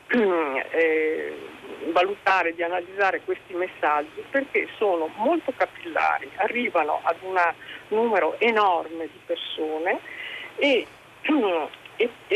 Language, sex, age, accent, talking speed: Italian, female, 50-69, native, 90 wpm